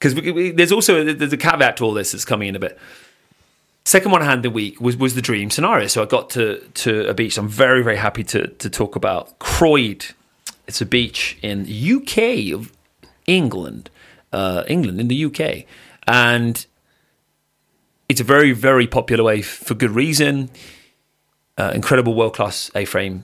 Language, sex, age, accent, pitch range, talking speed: English, male, 30-49, British, 110-155 Hz, 180 wpm